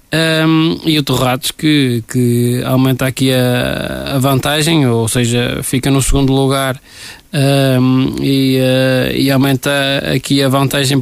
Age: 20-39